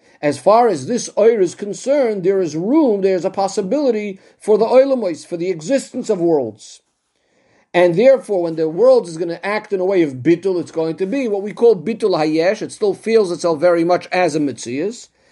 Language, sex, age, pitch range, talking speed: English, male, 50-69, 160-220 Hz, 210 wpm